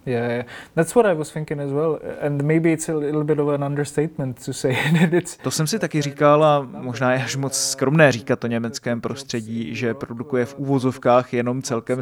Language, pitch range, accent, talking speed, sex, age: Czech, 125-145 Hz, native, 105 wpm, male, 20-39